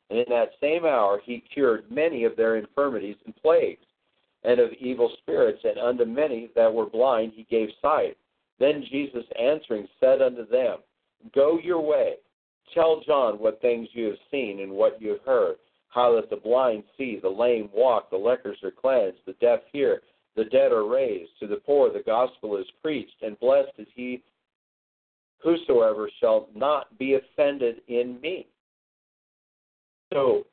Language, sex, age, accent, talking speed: English, male, 50-69, American, 165 wpm